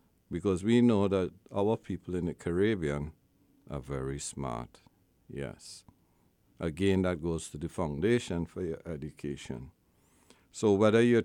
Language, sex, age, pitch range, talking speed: English, male, 60-79, 85-100 Hz, 135 wpm